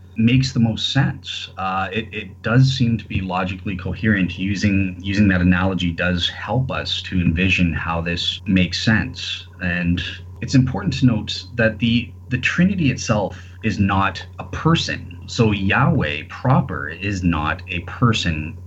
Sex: male